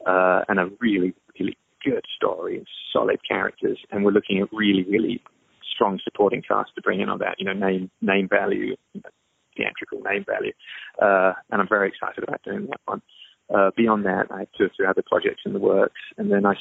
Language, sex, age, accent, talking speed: English, male, 30-49, British, 200 wpm